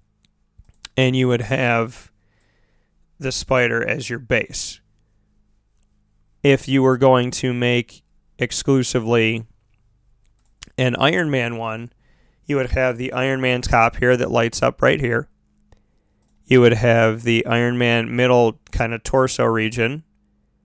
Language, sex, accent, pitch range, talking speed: English, male, American, 110-125 Hz, 130 wpm